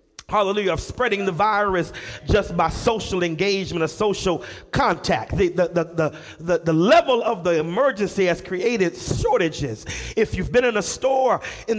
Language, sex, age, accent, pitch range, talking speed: English, male, 40-59, American, 190-260 Hz, 155 wpm